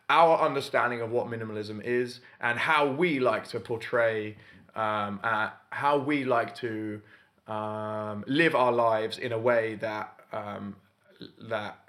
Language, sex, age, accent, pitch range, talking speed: English, male, 20-39, British, 110-140 Hz, 135 wpm